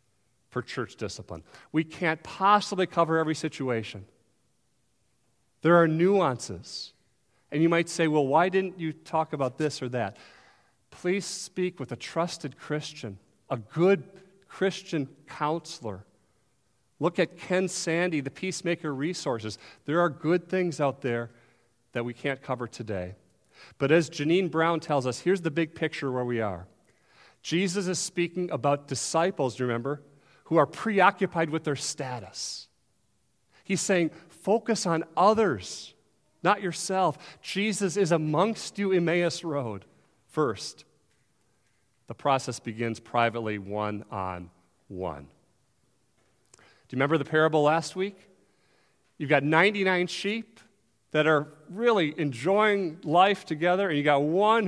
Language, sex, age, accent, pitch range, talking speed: English, male, 40-59, American, 120-180 Hz, 135 wpm